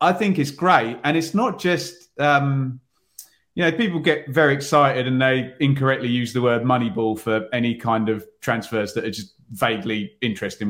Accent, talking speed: British, 185 wpm